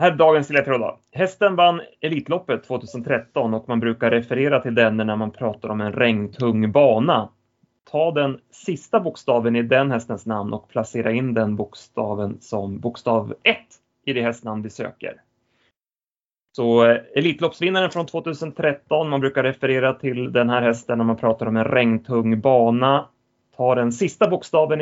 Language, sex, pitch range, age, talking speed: Swedish, male, 110-135 Hz, 30-49, 150 wpm